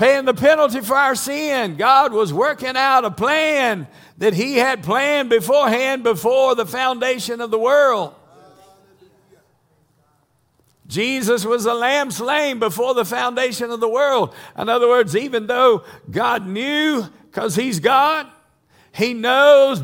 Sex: male